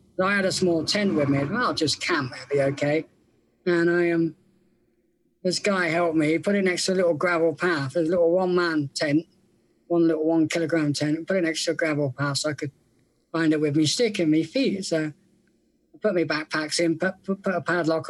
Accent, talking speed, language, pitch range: British, 225 wpm, English, 155-190 Hz